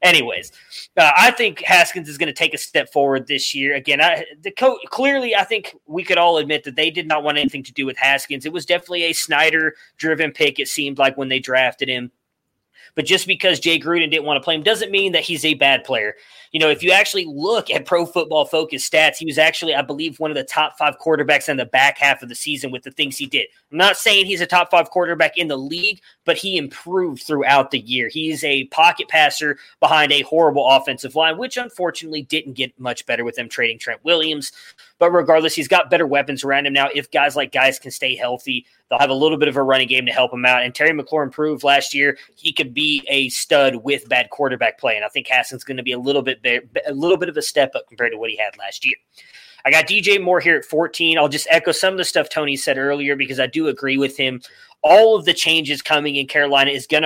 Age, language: 20-39, English